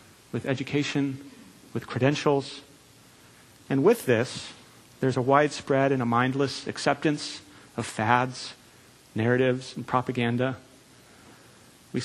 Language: English